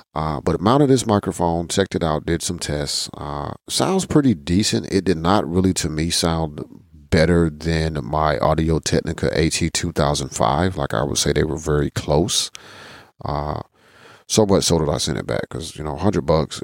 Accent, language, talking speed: American, English, 195 wpm